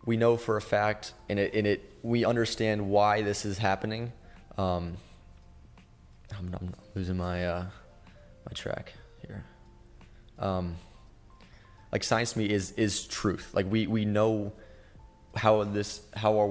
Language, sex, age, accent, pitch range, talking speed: English, male, 20-39, American, 90-105 Hz, 145 wpm